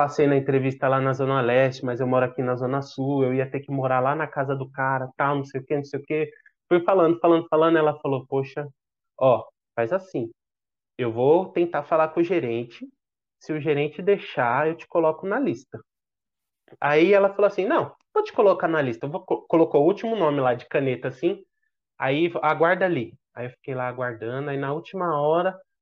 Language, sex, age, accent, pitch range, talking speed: Portuguese, male, 20-39, Brazilian, 130-170 Hz, 215 wpm